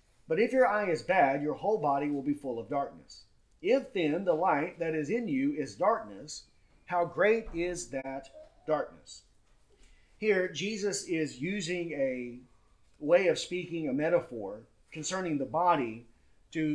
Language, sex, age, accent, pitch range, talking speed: English, male, 40-59, American, 140-180 Hz, 155 wpm